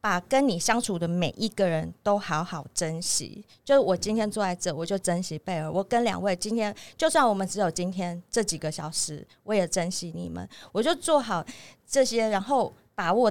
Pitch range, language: 180-225 Hz, Chinese